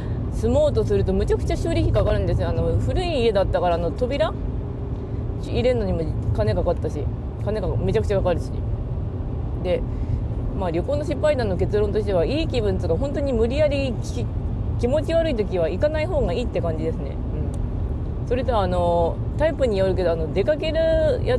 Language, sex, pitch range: Japanese, female, 100-115 Hz